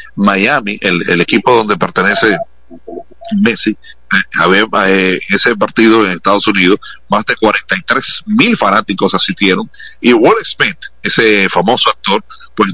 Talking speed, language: 120 wpm, Spanish